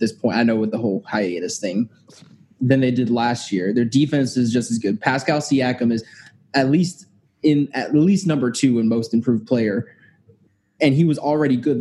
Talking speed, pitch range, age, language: 200 wpm, 115-140 Hz, 20-39, English